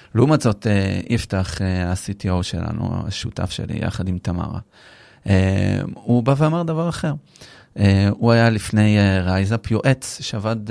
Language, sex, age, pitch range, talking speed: Hebrew, male, 30-49, 100-125 Hz, 145 wpm